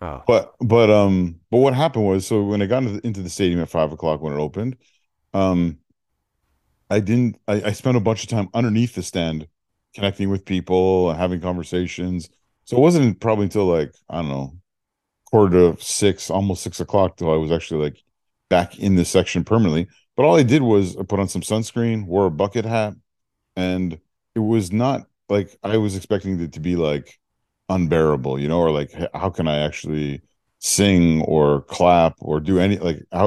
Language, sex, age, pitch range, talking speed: English, male, 40-59, 85-110 Hz, 195 wpm